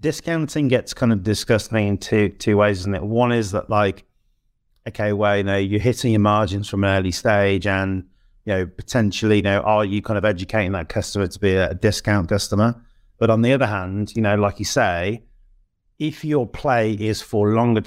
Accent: British